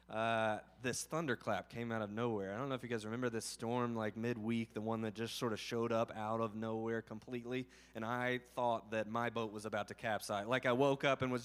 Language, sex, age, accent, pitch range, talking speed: English, male, 20-39, American, 105-130 Hz, 240 wpm